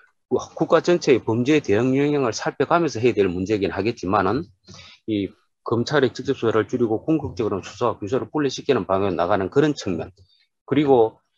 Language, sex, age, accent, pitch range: Korean, male, 30-49, native, 110-160 Hz